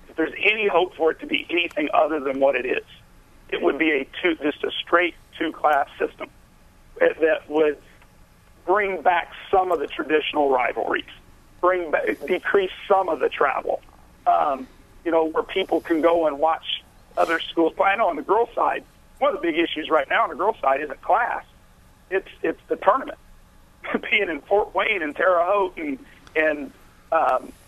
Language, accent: English, American